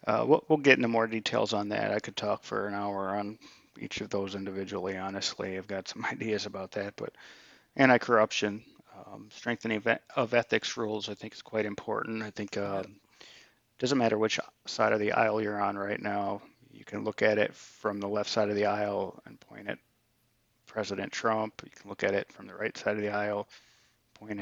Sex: male